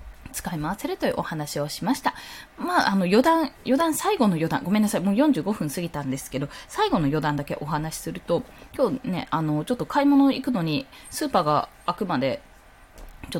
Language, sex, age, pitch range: Japanese, female, 20-39, 155-250 Hz